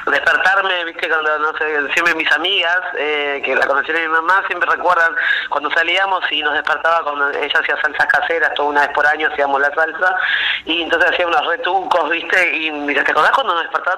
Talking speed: 205 wpm